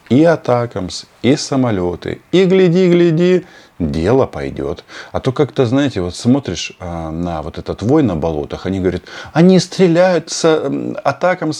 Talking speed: 140 wpm